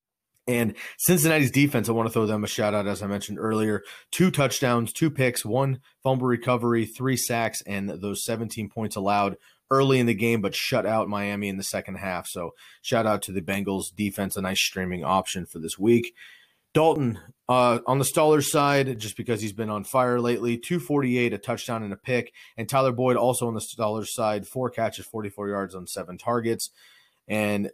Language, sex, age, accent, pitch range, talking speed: English, male, 30-49, American, 100-125 Hz, 190 wpm